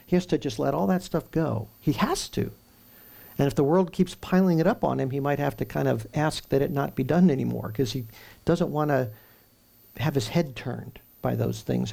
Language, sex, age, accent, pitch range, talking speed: English, male, 50-69, American, 125-165 Hz, 235 wpm